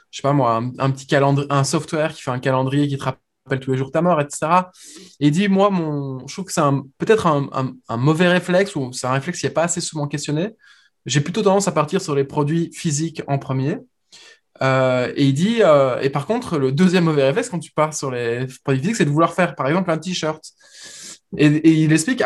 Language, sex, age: French, male, 20-39